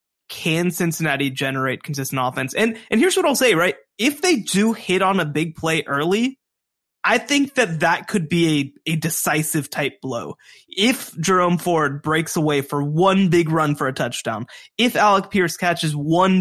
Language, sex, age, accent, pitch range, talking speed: English, male, 20-39, American, 150-195 Hz, 180 wpm